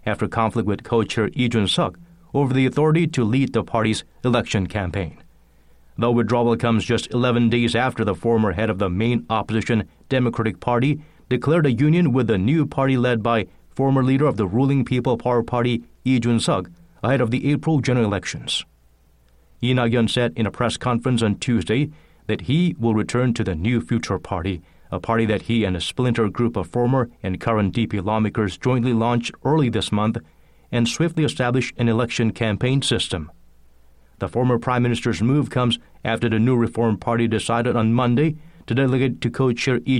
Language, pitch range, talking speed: English, 105-130 Hz, 180 wpm